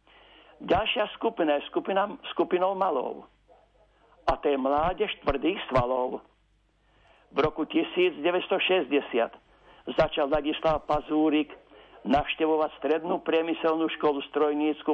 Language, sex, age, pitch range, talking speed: Slovak, male, 60-79, 150-175 Hz, 90 wpm